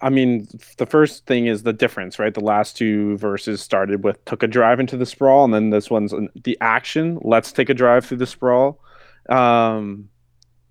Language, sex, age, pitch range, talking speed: English, male, 20-39, 105-125 Hz, 200 wpm